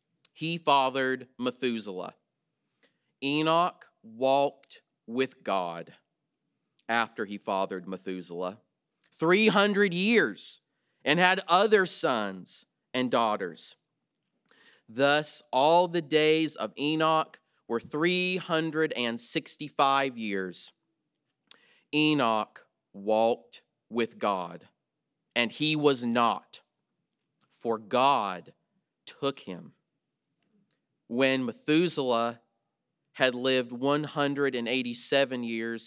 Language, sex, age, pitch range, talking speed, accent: English, male, 30-49, 120-160 Hz, 75 wpm, American